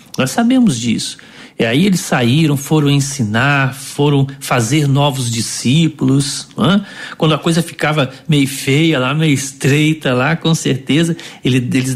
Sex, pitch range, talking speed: male, 120-145 Hz, 130 wpm